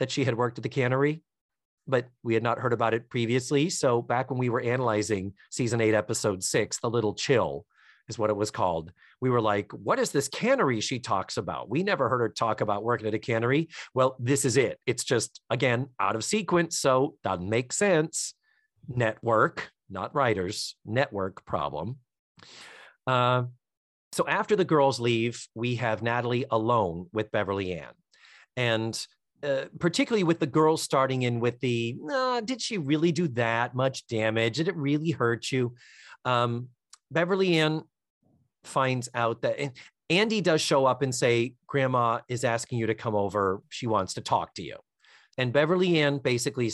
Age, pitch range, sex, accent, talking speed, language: 40-59, 115-145 Hz, male, American, 175 wpm, English